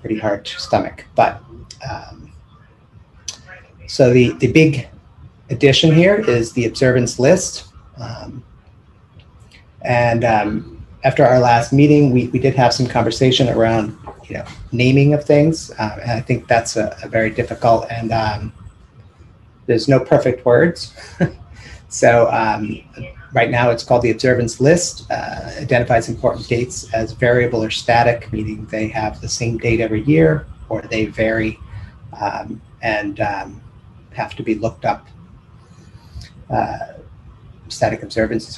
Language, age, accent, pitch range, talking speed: English, 30-49, American, 110-125 Hz, 135 wpm